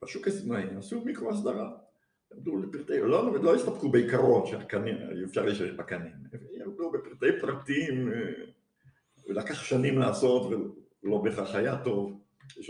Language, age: Hebrew, 60-79